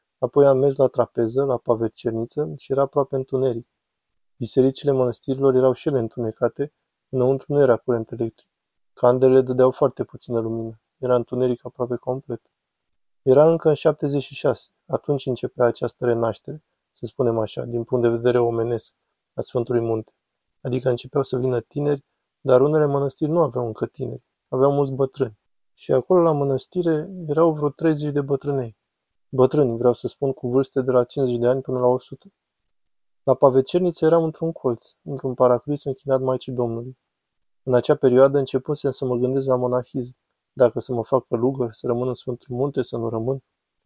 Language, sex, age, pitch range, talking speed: Romanian, male, 20-39, 125-140 Hz, 165 wpm